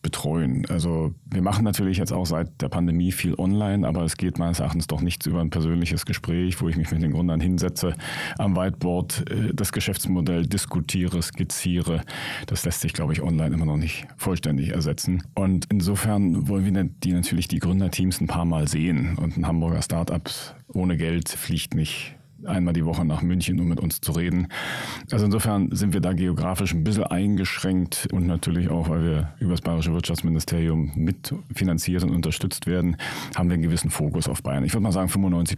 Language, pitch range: German, 80-95 Hz